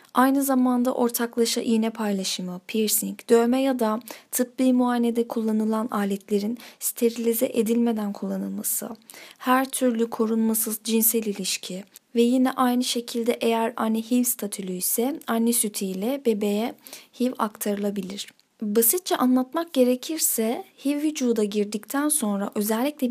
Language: Turkish